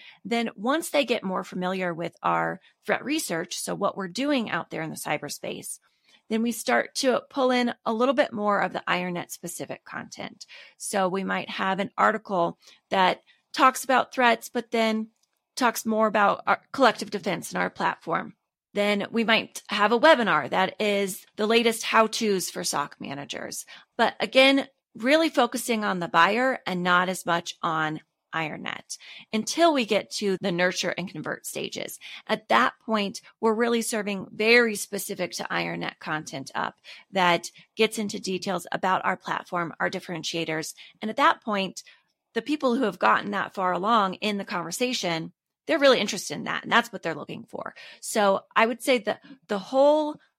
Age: 30-49